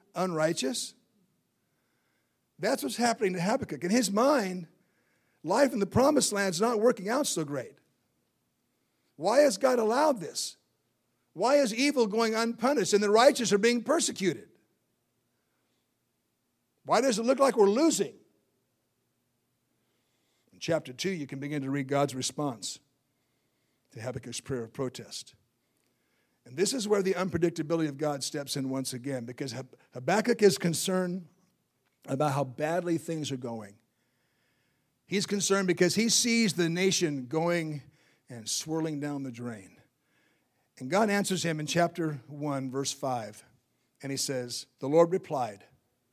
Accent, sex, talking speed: American, male, 140 wpm